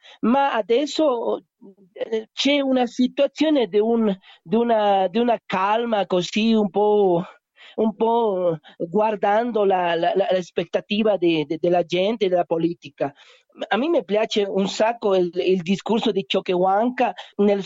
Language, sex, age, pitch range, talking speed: Italian, male, 40-59, 190-240 Hz, 135 wpm